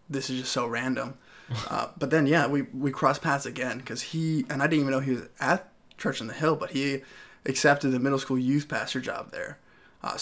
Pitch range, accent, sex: 130-140 Hz, American, male